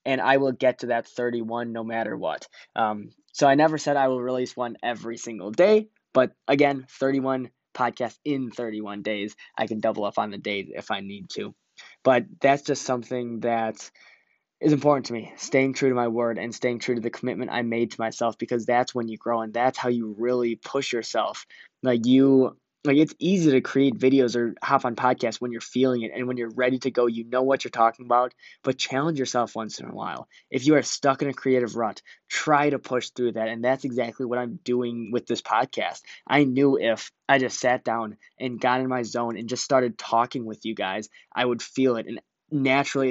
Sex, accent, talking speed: male, American, 220 wpm